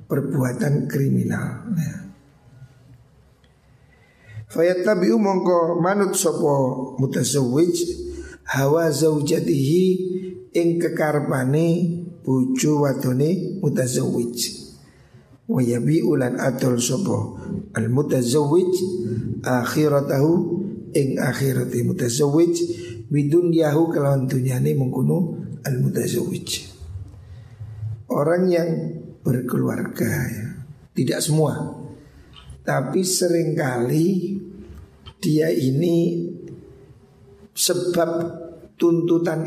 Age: 50-69